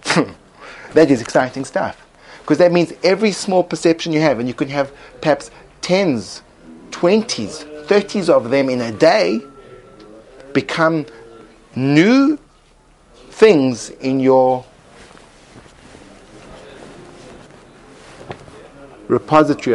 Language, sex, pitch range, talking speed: English, male, 120-170 Hz, 95 wpm